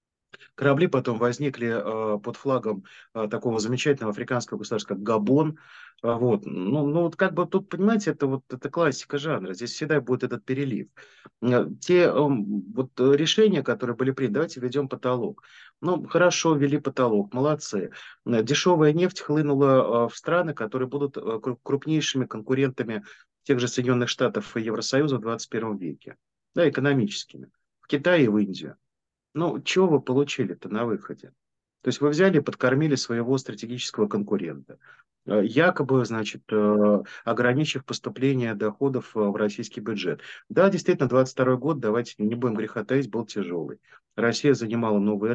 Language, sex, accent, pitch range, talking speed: Russian, male, native, 115-145 Hz, 145 wpm